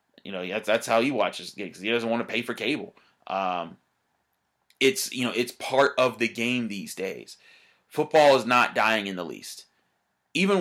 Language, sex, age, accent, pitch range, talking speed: English, male, 20-39, American, 110-130 Hz, 185 wpm